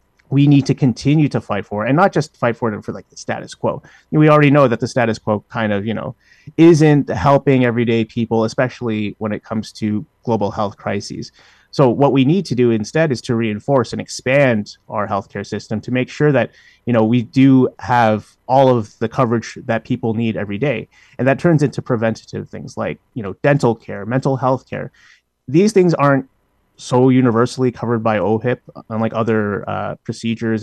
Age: 30-49